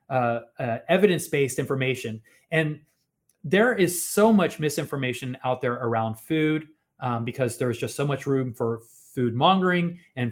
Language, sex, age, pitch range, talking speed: English, male, 30-49, 120-150 Hz, 145 wpm